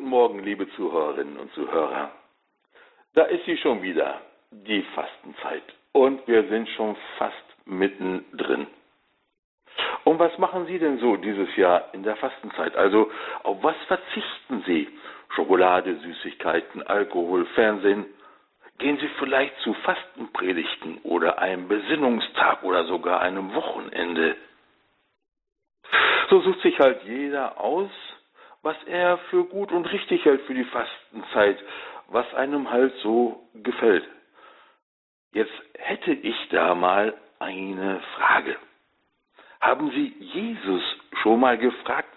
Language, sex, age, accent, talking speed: German, male, 60-79, German, 120 wpm